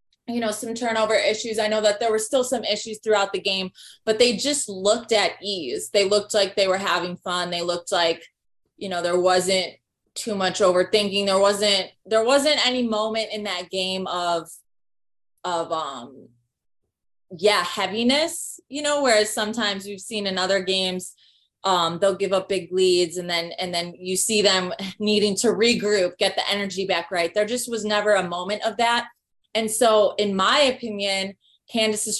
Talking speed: 180 wpm